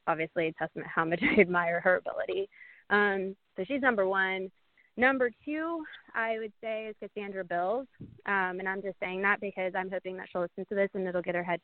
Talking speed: 210 wpm